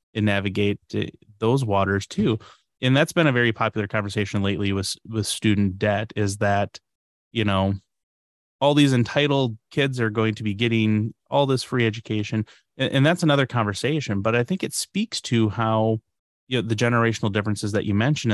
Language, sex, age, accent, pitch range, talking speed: English, male, 30-49, American, 105-125 Hz, 175 wpm